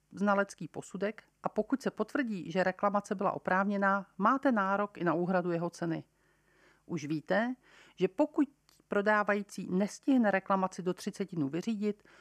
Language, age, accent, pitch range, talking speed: Czech, 50-69, native, 175-215 Hz, 140 wpm